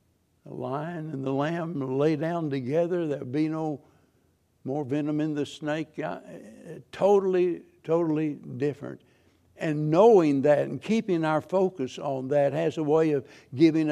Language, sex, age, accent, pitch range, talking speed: English, male, 60-79, American, 105-150 Hz, 140 wpm